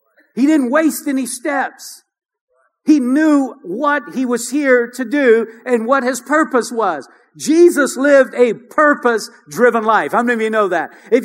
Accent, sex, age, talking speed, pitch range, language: American, male, 50-69, 165 wpm, 205-275 Hz, English